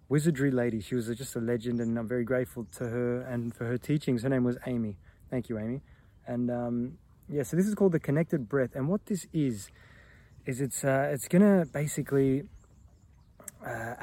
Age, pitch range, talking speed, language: 20-39, 115-145 Hz, 195 wpm, English